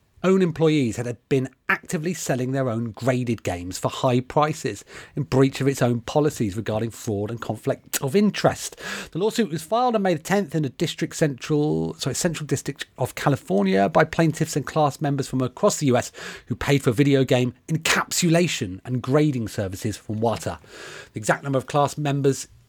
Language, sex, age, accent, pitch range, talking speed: English, male, 30-49, British, 120-190 Hz, 175 wpm